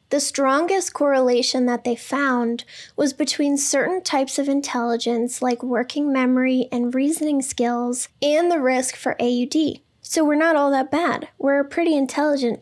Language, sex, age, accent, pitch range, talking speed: English, female, 10-29, American, 250-285 Hz, 150 wpm